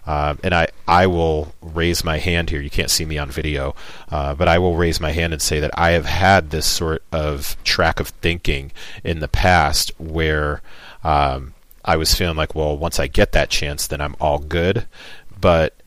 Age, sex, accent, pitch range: 40-59, male, American, 75-90 Hz